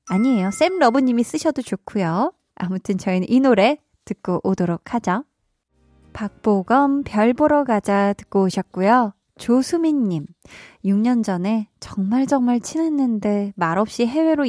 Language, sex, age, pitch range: Korean, female, 20-39, 195-255 Hz